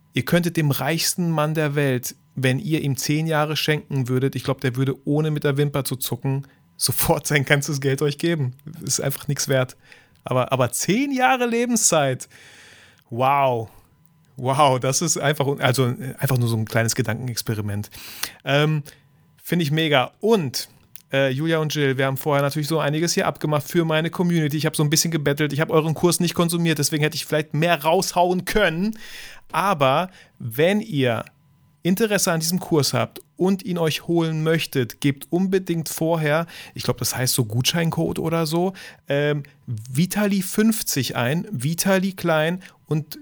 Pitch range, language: 135-165 Hz, German